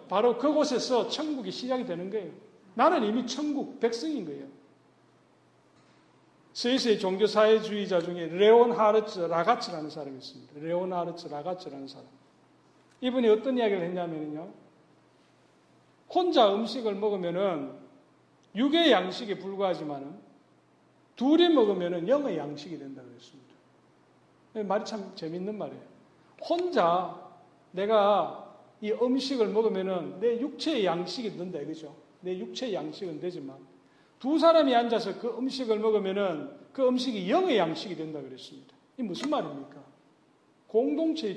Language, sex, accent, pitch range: Korean, male, native, 175-255 Hz